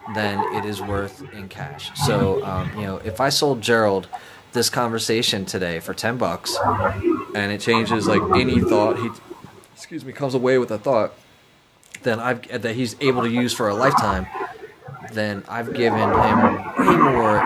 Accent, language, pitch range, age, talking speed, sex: American, English, 100-120 Hz, 20-39, 170 wpm, male